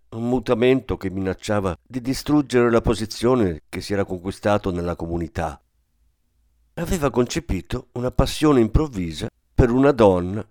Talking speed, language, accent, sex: 125 wpm, Italian, native, male